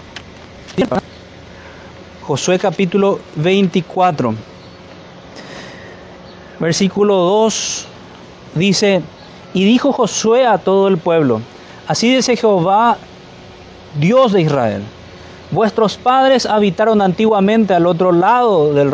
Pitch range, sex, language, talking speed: 160-210 Hz, male, Spanish, 85 wpm